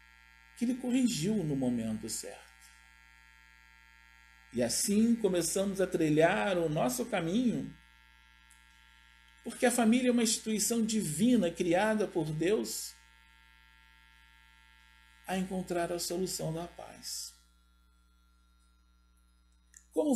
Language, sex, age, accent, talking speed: Portuguese, male, 50-69, Brazilian, 90 wpm